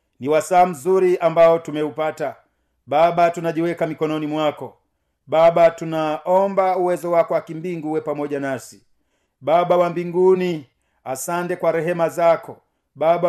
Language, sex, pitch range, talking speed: Swahili, male, 155-185 Hz, 115 wpm